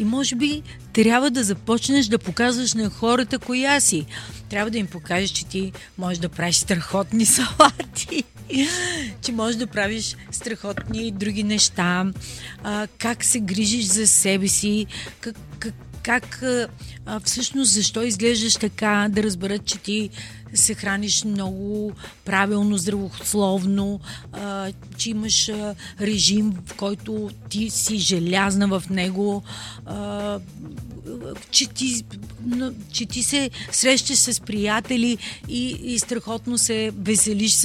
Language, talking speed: Bulgarian, 125 wpm